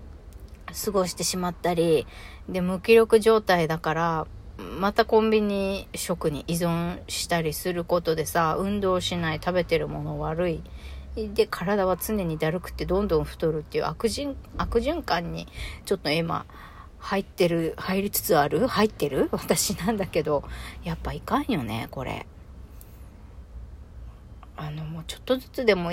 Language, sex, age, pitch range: Japanese, female, 40-59, 160-220 Hz